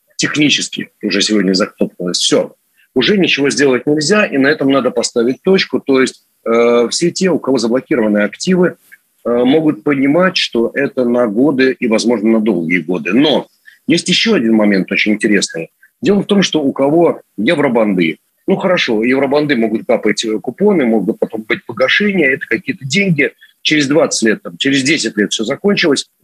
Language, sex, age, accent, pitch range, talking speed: Russian, male, 40-59, native, 115-170 Hz, 160 wpm